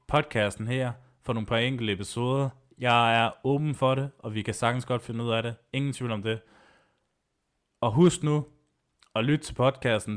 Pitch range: 105-130 Hz